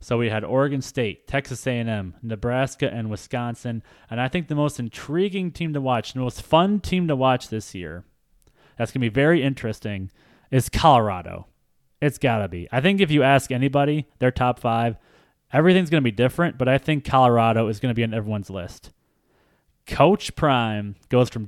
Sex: male